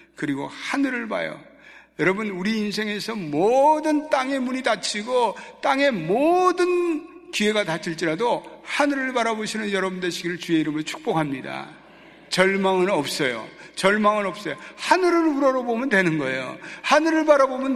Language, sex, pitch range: Korean, male, 160-260 Hz